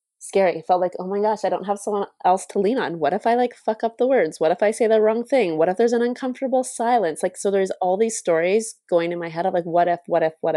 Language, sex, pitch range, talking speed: English, female, 170-200 Hz, 300 wpm